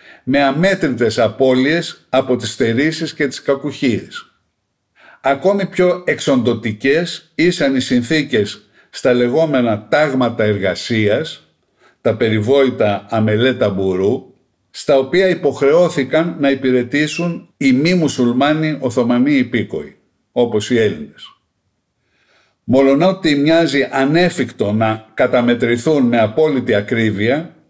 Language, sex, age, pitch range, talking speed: Greek, male, 50-69, 120-165 Hz, 100 wpm